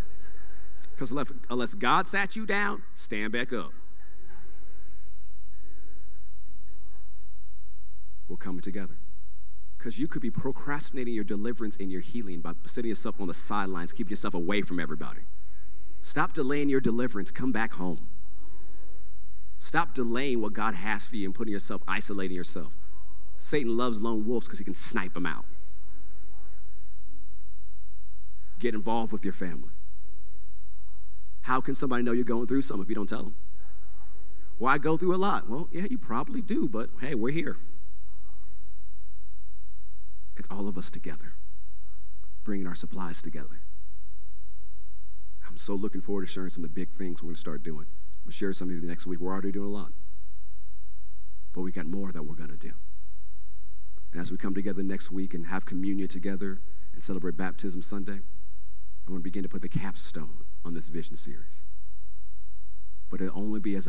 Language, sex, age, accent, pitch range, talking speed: English, male, 40-59, American, 90-100 Hz, 165 wpm